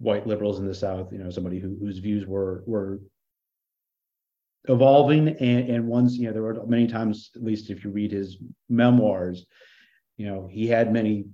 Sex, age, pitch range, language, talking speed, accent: male, 40-59, 95-115 Hz, English, 185 wpm, American